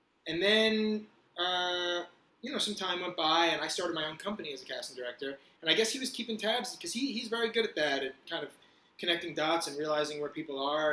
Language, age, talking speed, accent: English, 20-39, 235 wpm, American